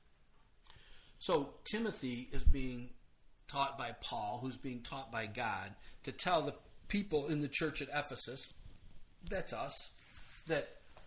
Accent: American